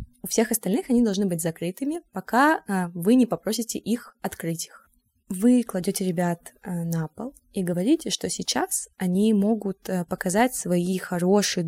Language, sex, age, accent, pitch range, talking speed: Russian, female, 20-39, native, 180-225 Hz, 145 wpm